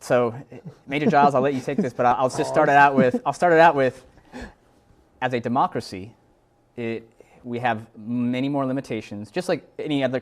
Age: 20-39